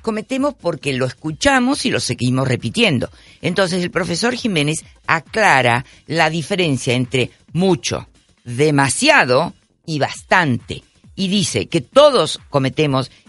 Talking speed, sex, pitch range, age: 115 wpm, female, 130-200 Hz, 50-69